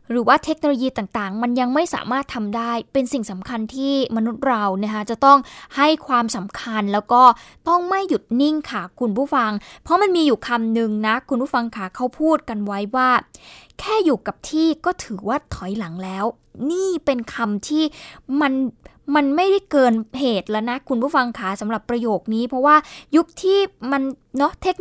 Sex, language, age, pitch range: female, Thai, 20-39, 230-295 Hz